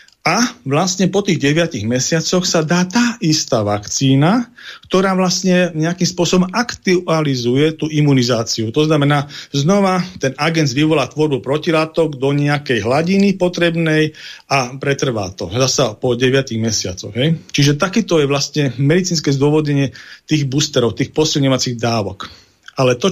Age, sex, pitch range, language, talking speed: 40-59, male, 130-170 Hz, Slovak, 130 wpm